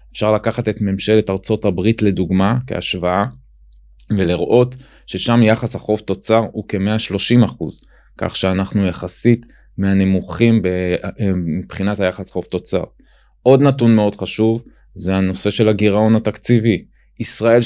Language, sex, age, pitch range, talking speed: Hebrew, male, 20-39, 95-115 Hz, 115 wpm